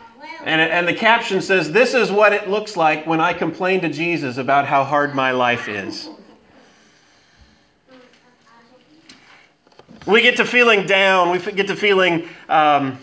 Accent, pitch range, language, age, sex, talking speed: American, 150-225 Hz, English, 30-49, male, 145 wpm